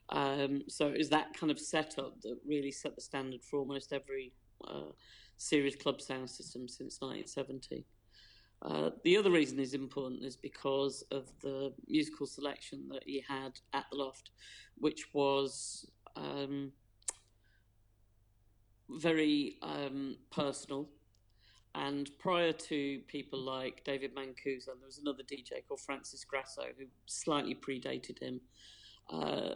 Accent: British